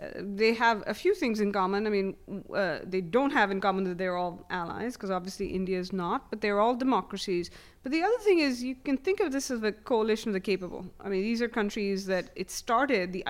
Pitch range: 185-220 Hz